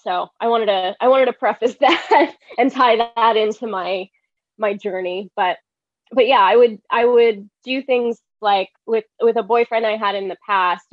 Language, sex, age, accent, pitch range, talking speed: English, female, 20-39, American, 185-230 Hz, 190 wpm